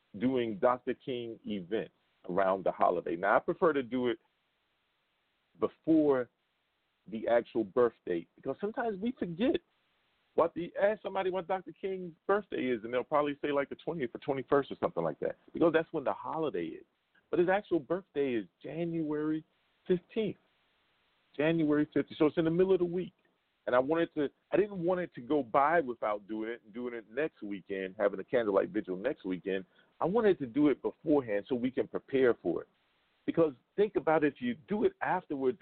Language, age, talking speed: English, 40-59, 190 wpm